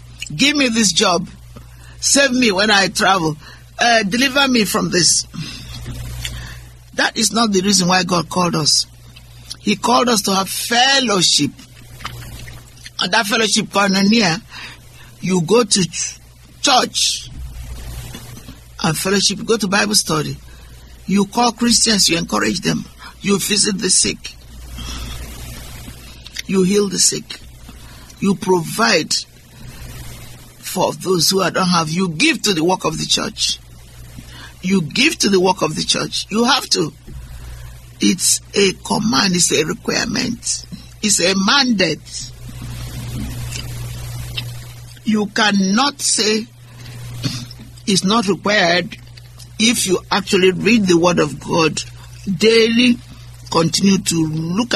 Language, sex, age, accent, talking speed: English, male, 60-79, Nigerian, 125 wpm